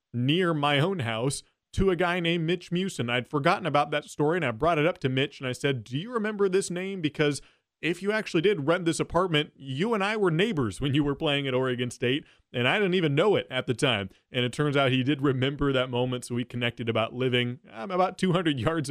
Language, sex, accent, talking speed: English, male, American, 240 wpm